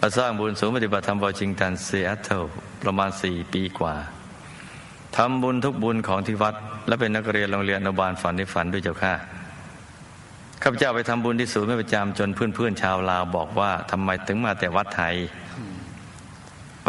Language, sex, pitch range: Thai, male, 95-110 Hz